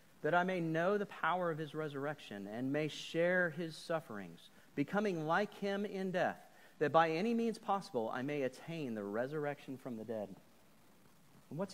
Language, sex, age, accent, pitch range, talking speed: English, male, 40-59, American, 130-170 Hz, 170 wpm